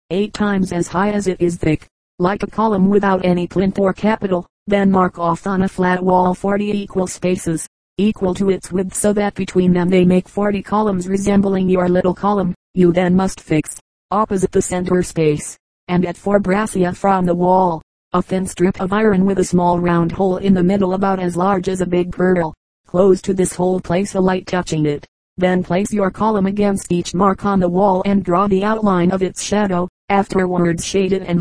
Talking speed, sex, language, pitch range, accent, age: 205 wpm, female, English, 180-195 Hz, American, 30-49